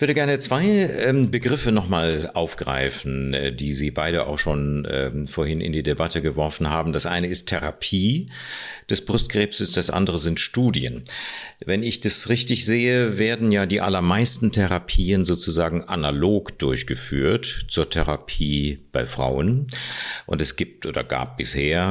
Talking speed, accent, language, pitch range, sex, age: 140 wpm, German, German, 75-100 Hz, male, 50-69